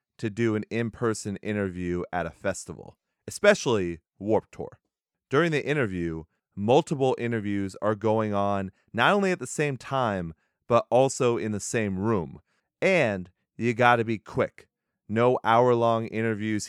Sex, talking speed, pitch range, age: male, 145 wpm, 100-125 Hz, 30-49